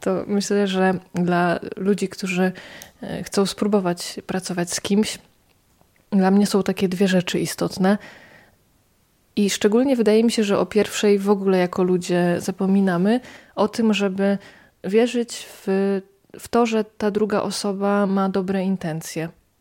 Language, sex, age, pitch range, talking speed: Polish, female, 20-39, 195-220 Hz, 140 wpm